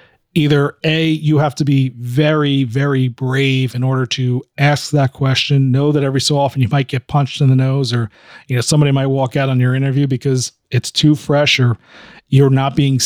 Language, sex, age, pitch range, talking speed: English, male, 40-59, 130-155 Hz, 205 wpm